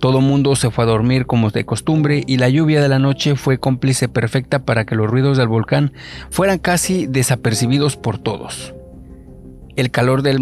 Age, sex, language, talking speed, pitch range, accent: 40-59, male, Spanish, 185 wpm, 115-135 Hz, Mexican